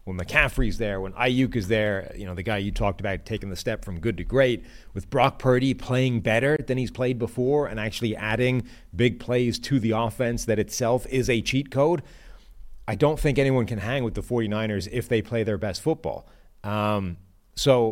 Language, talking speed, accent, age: English, 205 wpm, American, 30-49